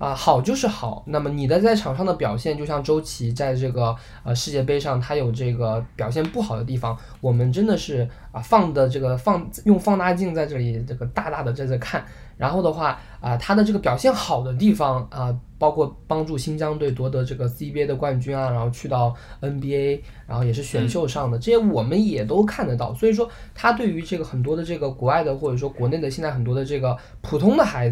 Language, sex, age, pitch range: Chinese, male, 20-39, 120-155 Hz